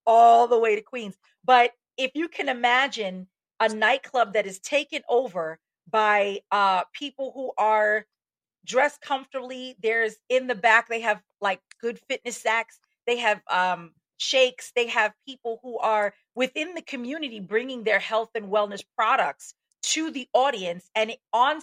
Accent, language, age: American, English, 40-59